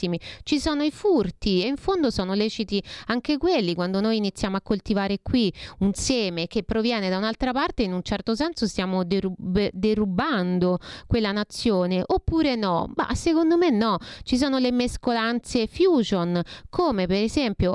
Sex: female